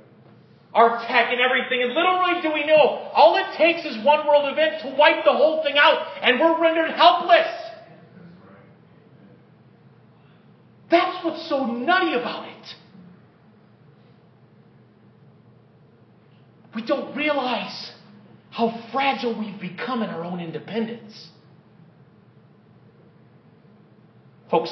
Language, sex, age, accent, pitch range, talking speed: English, male, 40-59, American, 160-245 Hz, 105 wpm